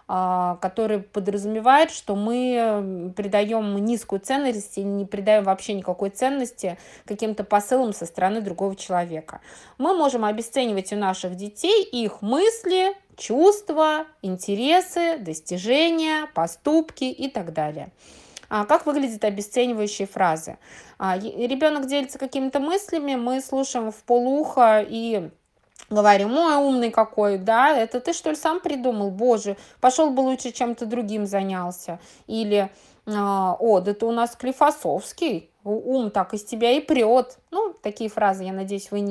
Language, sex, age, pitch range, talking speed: Russian, female, 20-39, 200-260 Hz, 130 wpm